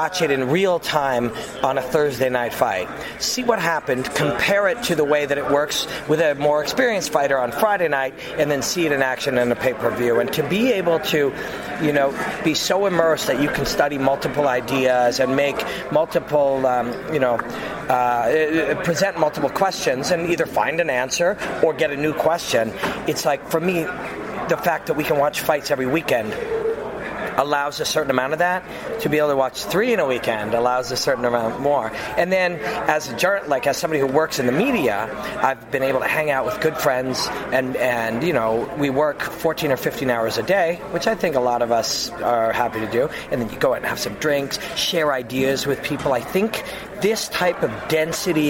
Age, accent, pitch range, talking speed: 40-59, American, 130-165 Hz, 210 wpm